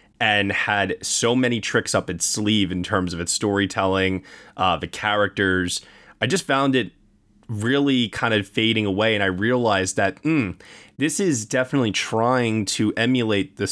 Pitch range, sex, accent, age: 95-120 Hz, male, American, 20-39